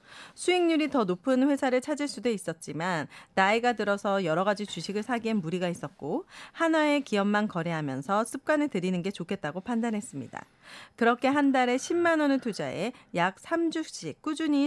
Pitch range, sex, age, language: 185-255 Hz, female, 40-59, Korean